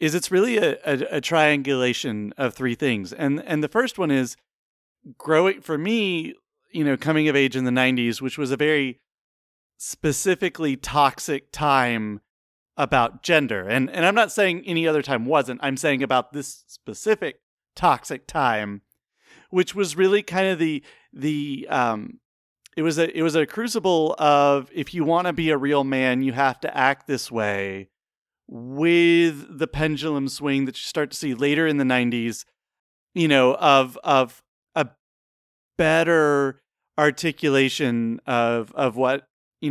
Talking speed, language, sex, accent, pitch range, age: 160 wpm, English, male, American, 130-160 Hz, 30-49